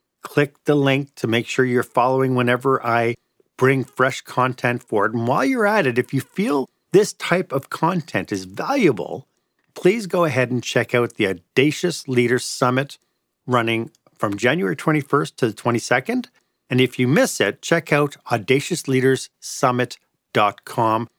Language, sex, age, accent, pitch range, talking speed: English, male, 40-59, American, 115-155 Hz, 150 wpm